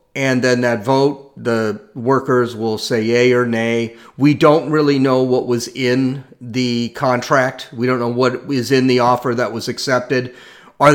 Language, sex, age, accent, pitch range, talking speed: English, male, 40-59, American, 125-150 Hz, 175 wpm